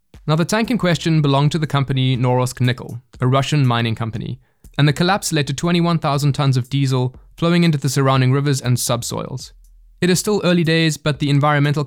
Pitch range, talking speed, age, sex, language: 130-160 Hz, 195 wpm, 20-39, male, English